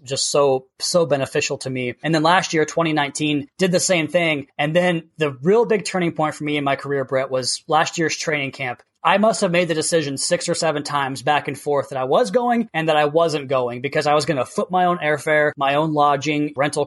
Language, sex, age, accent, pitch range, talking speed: English, male, 20-39, American, 140-165 Hz, 240 wpm